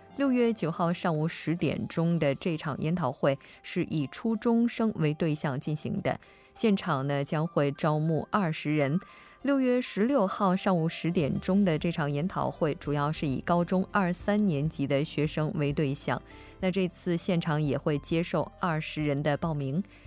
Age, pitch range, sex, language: 20-39, 150-200 Hz, female, Korean